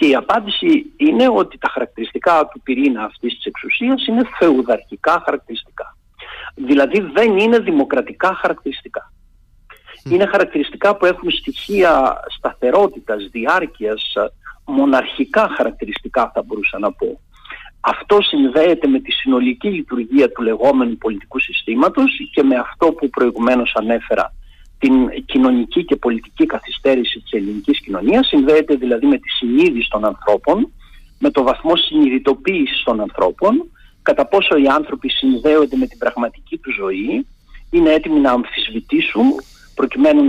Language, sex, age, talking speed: Greek, male, 50-69, 125 wpm